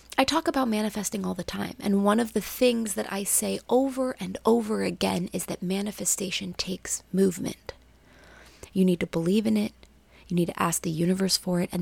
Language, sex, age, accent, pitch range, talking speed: English, female, 20-39, American, 130-210 Hz, 200 wpm